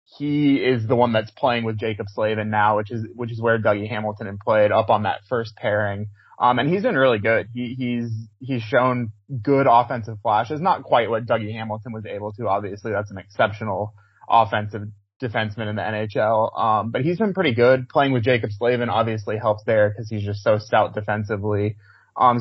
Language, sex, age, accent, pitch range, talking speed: English, male, 20-39, American, 105-130 Hz, 200 wpm